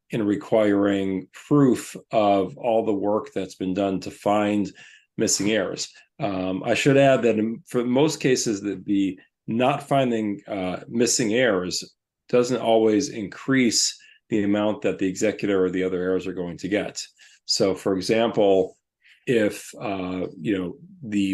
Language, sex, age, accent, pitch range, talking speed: English, male, 40-59, American, 95-120 Hz, 150 wpm